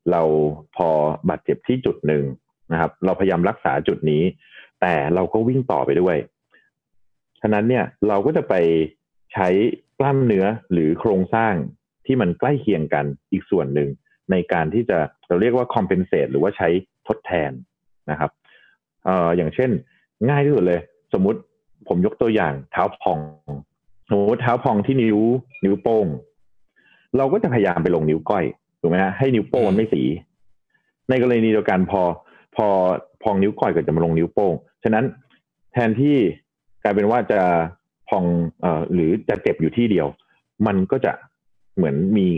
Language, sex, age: Thai, male, 30-49